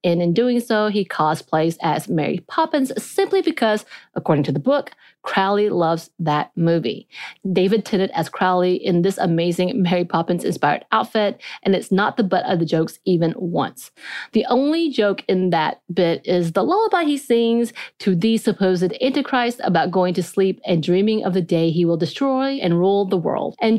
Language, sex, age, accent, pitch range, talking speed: English, female, 30-49, American, 170-230 Hz, 180 wpm